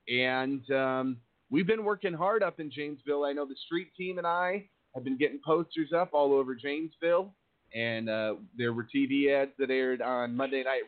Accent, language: American, English